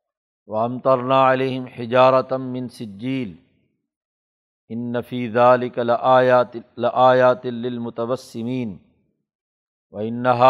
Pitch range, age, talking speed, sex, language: 115-130 Hz, 50-69, 80 wpm, male, Urdu